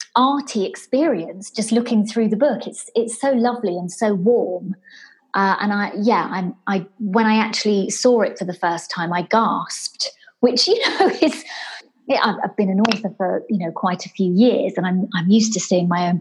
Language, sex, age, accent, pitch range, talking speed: English, female, 30-49, British, 190-235 Hz, 205 wpm